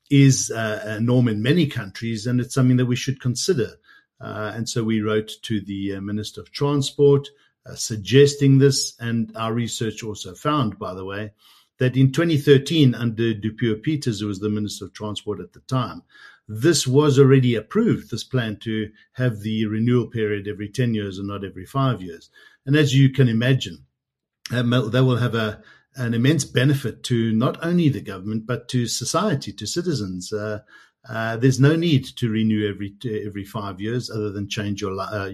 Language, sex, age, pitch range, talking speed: English, male, 50-69, 105-135 Hz, 180 wpm